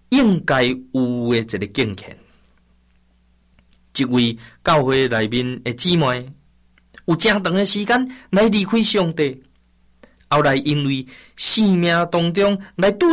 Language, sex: Chinese, male